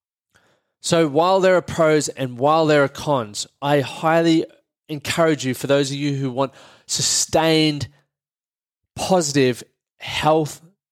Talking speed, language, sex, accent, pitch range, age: 125 wpm, English, male, Australian, 125-150 Hz, 20-39